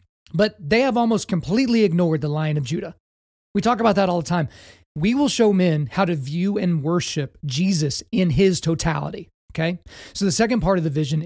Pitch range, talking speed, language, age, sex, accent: 155-195 Hz, 205 wpm, English, 30-49, male, American